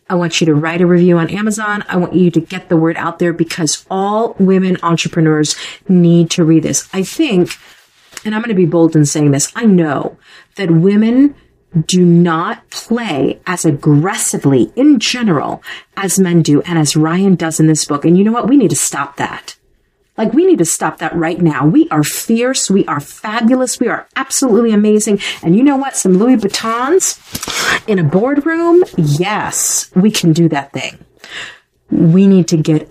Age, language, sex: 40-59, English, female